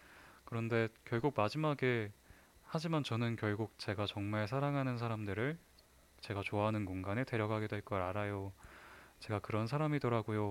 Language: Korean